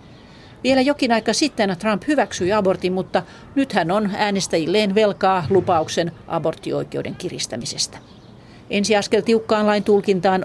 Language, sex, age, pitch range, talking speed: Finnish, female, 40-59, 170-210 Hz, 120 wpm